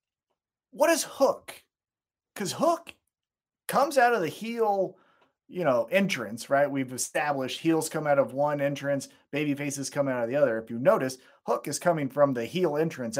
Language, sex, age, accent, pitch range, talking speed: English, male, 30-49, American, 145-225 Hz, 175 wpm